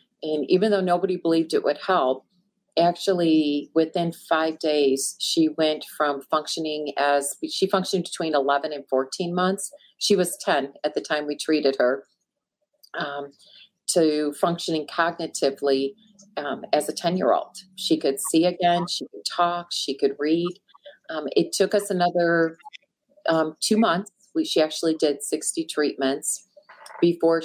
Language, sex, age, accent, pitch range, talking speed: English, female, 40-59, American, 150-185 Hz, 150 wpm